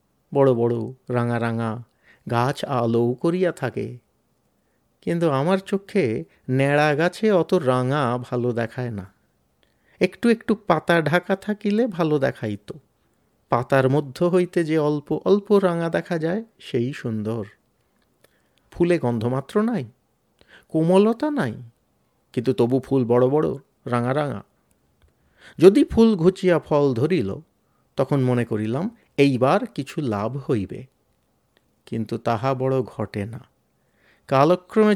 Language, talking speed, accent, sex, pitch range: Bengali, 110 wpm, native, male, 125-180 Hz